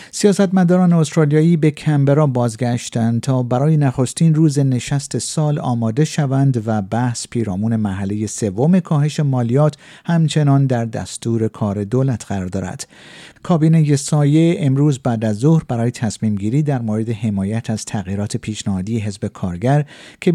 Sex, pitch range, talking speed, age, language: male, 110-155 Hz, 135 wpm, 50-69, Persian